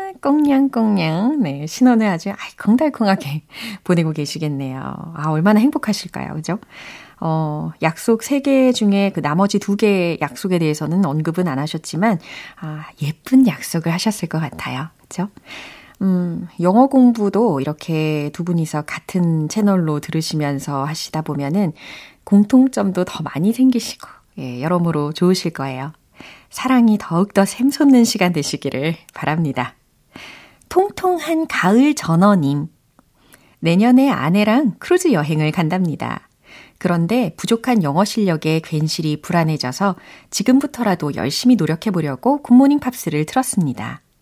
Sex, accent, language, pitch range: female, native, Korean, 155-230 Hz